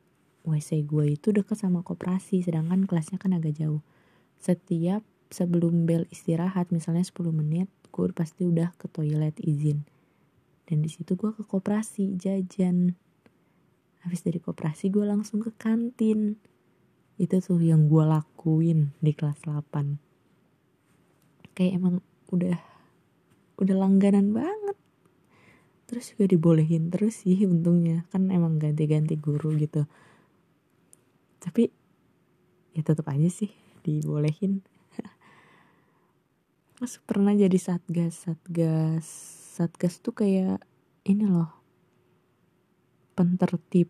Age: 20-39